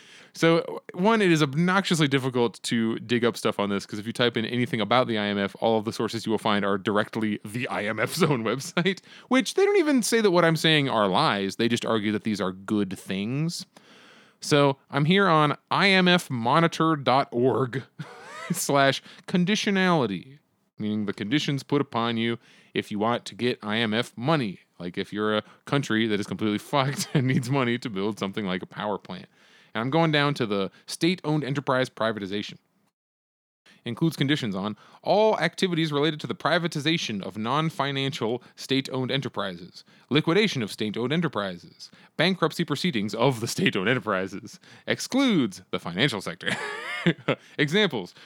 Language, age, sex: English, 20-39, male